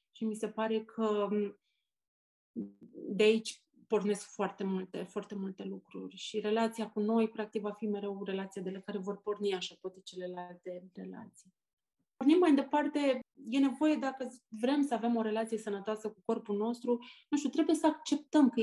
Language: Romanian